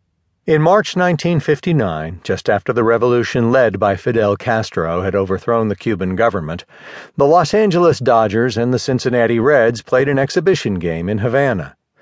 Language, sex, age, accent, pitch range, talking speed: English, male, 50-69, American, 100-140 Hz, 150 wpm